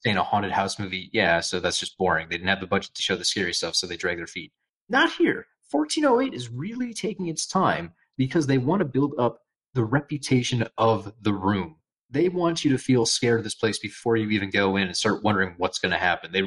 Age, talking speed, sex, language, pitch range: 30-49, 240 wpm, male, English, 105-165 Hz